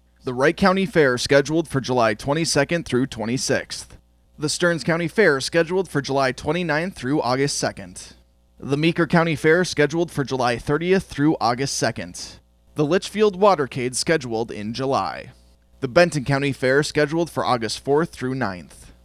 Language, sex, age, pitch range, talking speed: English, male, 20-39, 130-175 Hz, 150 wpm